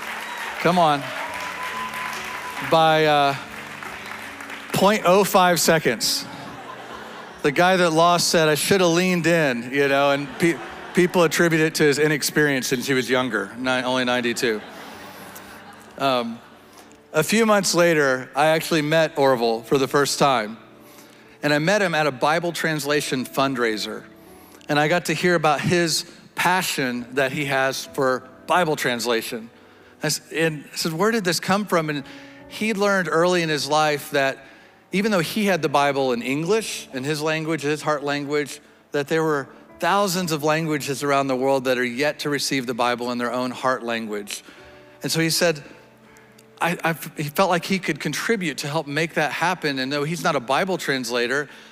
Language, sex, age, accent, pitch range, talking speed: English, male, 40-59, American, 135-170 Hz, 160 wpm